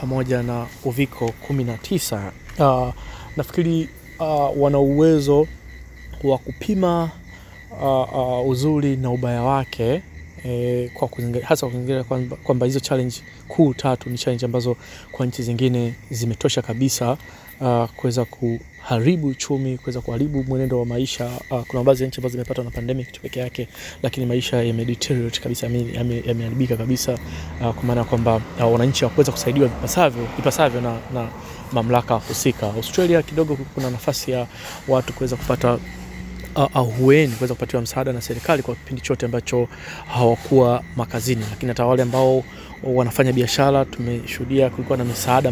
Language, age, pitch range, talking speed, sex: Swahili, 20-39, 120-135 Hz, 140 wpm, male